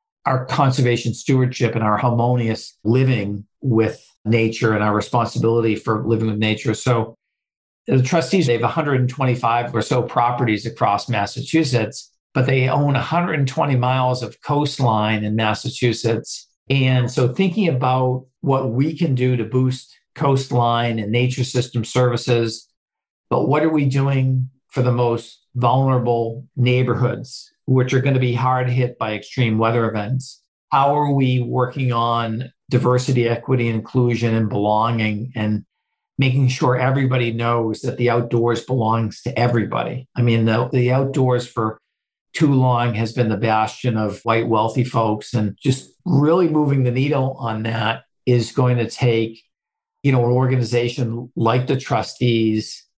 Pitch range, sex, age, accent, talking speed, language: 115-130 Hz, male, 50-69, American, 145 wpm, English